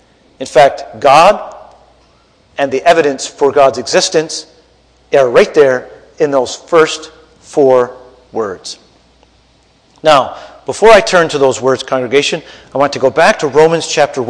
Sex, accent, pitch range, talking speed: male, American, 135-200 Hz, 140 wpm